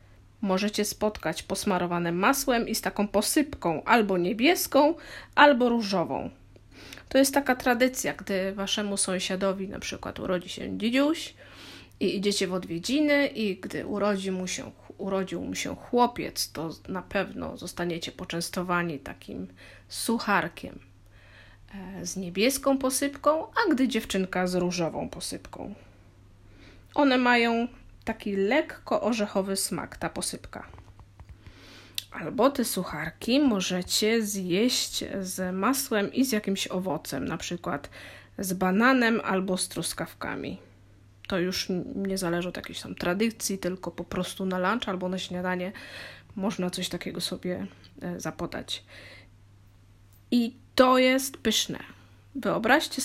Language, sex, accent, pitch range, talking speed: Polish, female, native, 170-230 Hz, 115 wpm